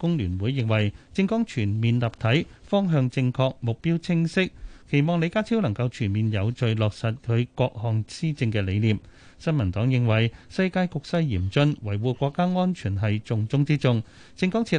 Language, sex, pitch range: Chinese, male, 115-155 Hz